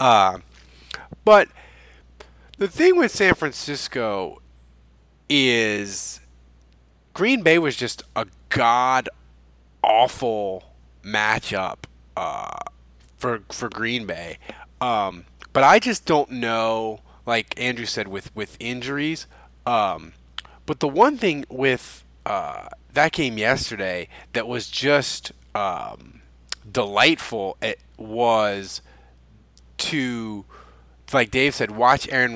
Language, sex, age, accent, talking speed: English, male, 30-49, American, 105 wpm